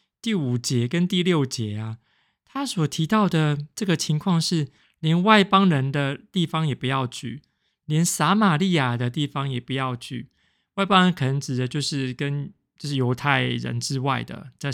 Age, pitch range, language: 20-39, 130-170 Hz, Chinese